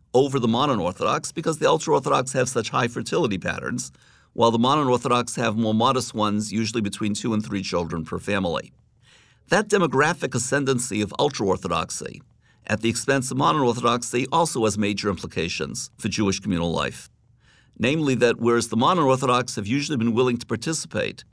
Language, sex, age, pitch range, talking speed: English, male, 50-69, 110-130 Hz, 165 wpm